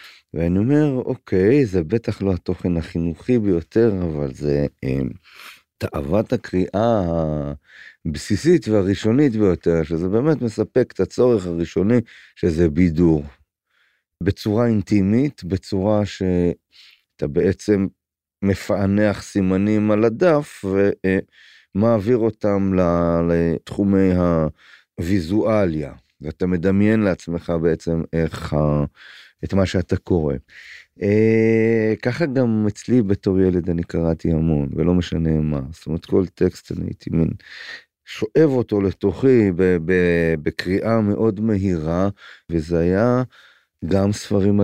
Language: Hebrew